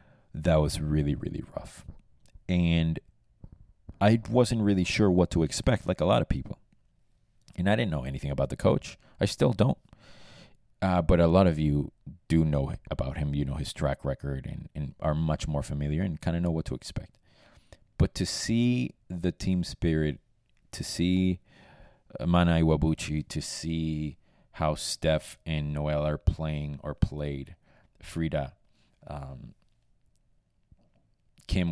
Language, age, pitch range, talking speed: English, 30-49, 75-90 Hz, 150 wpm